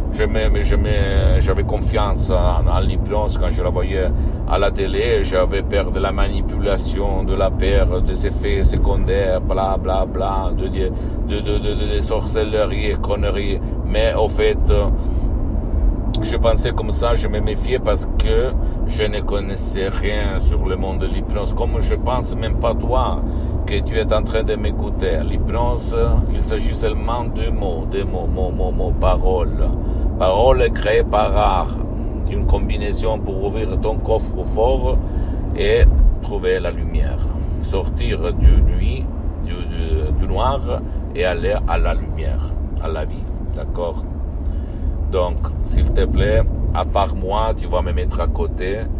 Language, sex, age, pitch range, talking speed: Italian, male, 60-79, 75-100 Hz, 160 wpm